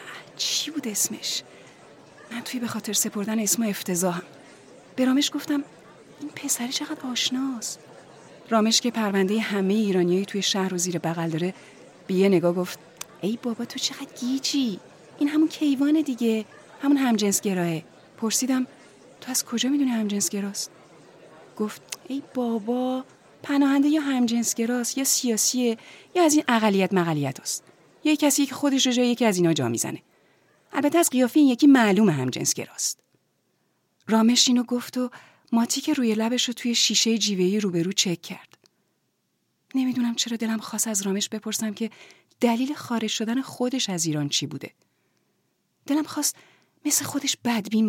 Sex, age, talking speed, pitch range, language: female, 30-49, 150 wpm, 195-255 Hz, Persian